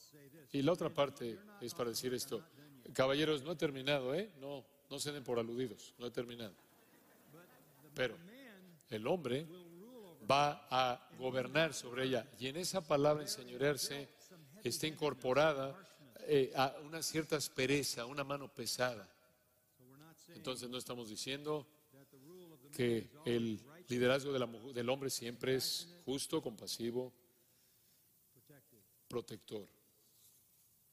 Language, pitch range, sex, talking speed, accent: Spanish, 125-155 Hz, male, 115 wpm, Mexican